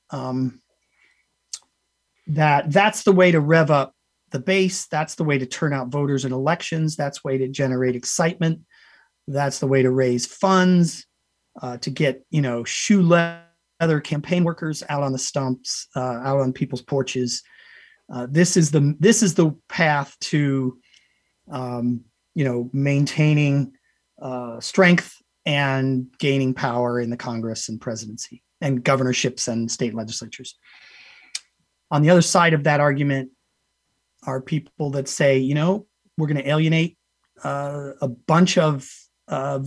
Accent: American